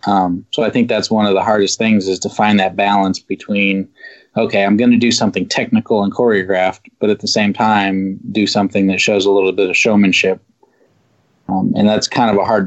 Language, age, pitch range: English, 20-39, 100-115 Hz